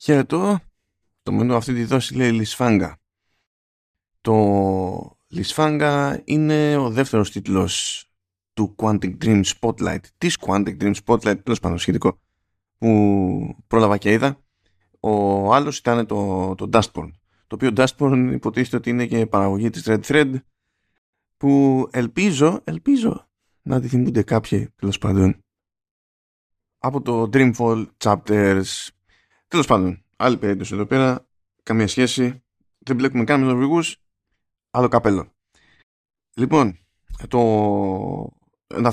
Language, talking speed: Greek, 115 wpm